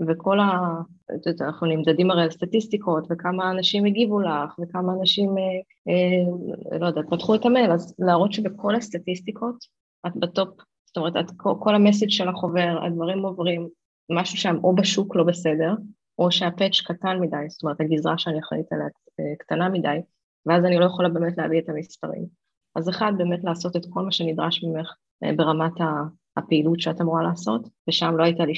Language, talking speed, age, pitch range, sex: Hebrew, 160 wpm, 20-39, 165-195 Hz, female